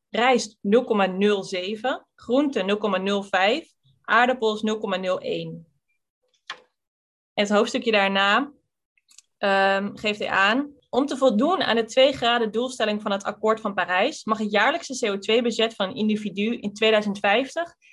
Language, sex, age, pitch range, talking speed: Dutch, female, 20-39, 195-245 Hz, 120 wpm